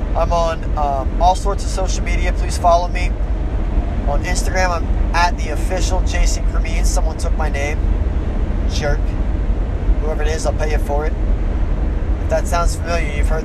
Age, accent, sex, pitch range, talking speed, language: 20-39, American, male, 75-90 Hz, 170 wpm, English